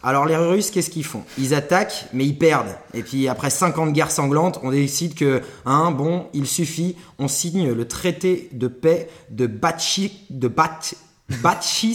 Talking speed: 170 wpm